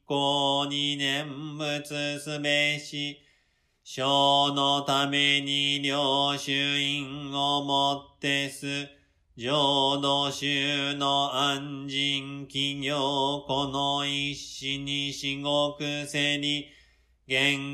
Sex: male